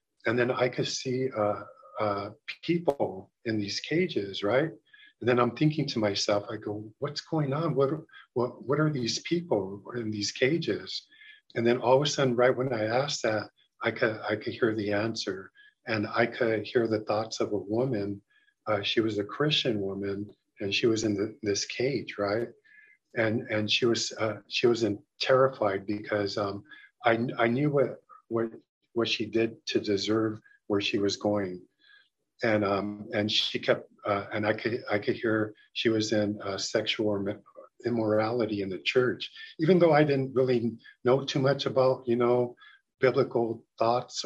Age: 50-69